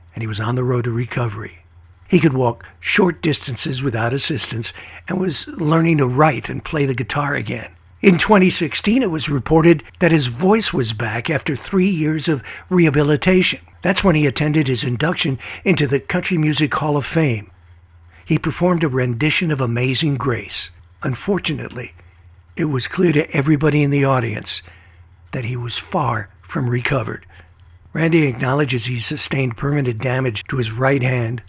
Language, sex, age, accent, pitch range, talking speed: English, male, 60-79, American, 115-160 Hz, 160 wpm